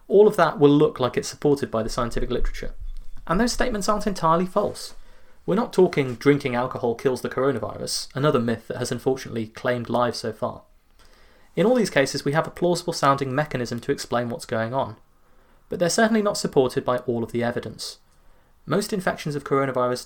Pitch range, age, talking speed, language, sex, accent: 120-145 Hz, 30-49, 190 wpm, English, male, British